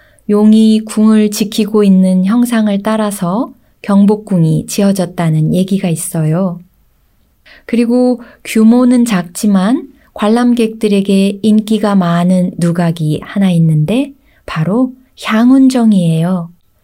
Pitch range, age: 180-230 Hz, 20-39